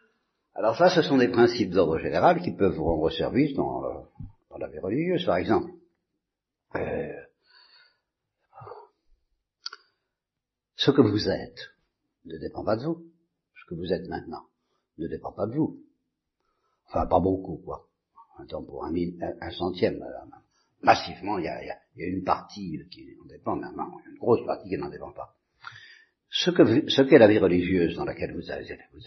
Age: 60-79